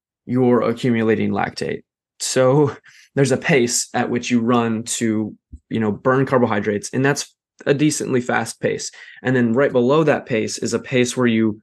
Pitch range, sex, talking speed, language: 115-135 Hz, male, 170 wpm, English